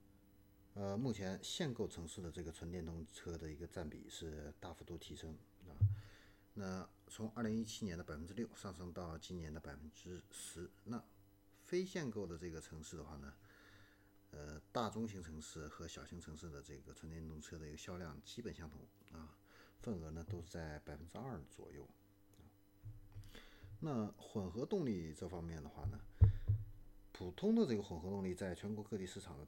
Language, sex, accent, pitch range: Chinese, male, native, 80-100 Hz